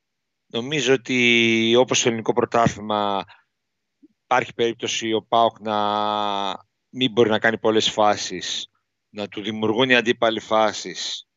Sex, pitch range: male, 105-125 Hz